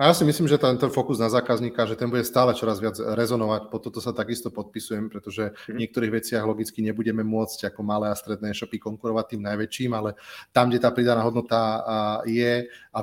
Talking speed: 205 wpm